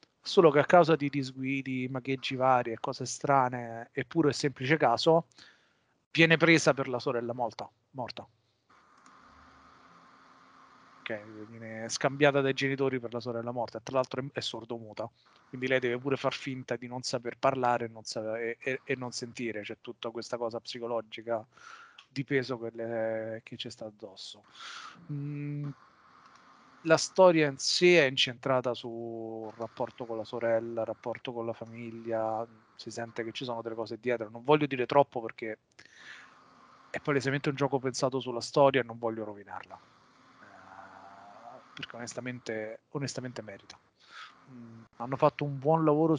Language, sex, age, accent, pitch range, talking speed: Italian, male, 30-49, native, 115-140 Hz, 150 wpm